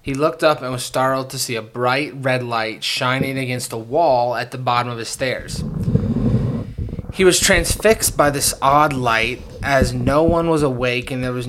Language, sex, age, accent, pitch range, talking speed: English, male, 20-39, American, 125-150 Hz, 195 wpm